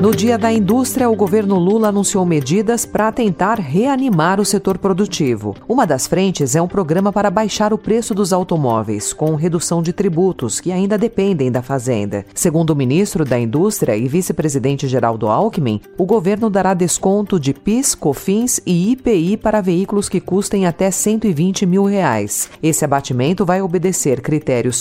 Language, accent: Portuguese, Brazilian